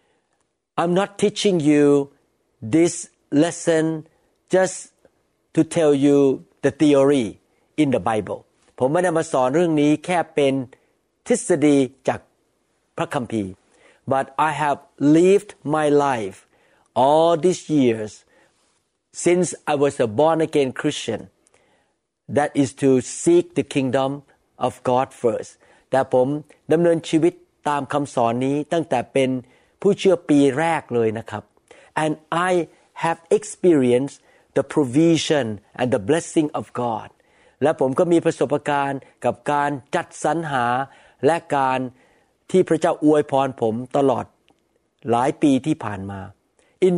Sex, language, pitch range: male, Thai, 135-170 Hz